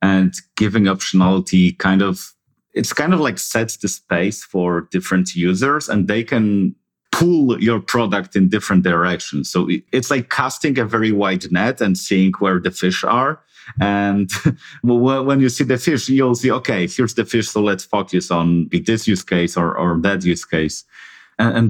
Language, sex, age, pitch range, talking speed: English, male, 40-59, 90-115 Hz, 175 wpm